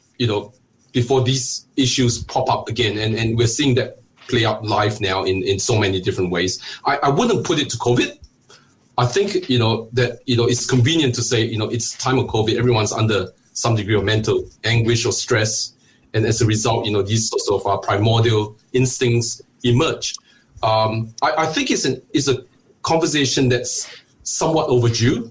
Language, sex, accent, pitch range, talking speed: English, male, Malaysian, 110-125 Hz, 190 wpm